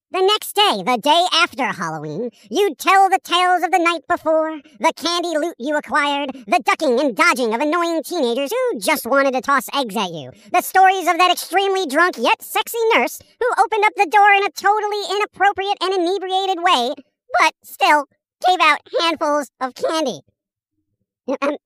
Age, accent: 50-69, American